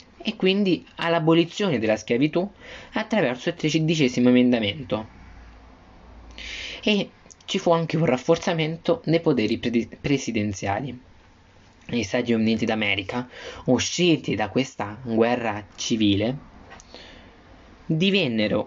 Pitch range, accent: 105-160 Hz, native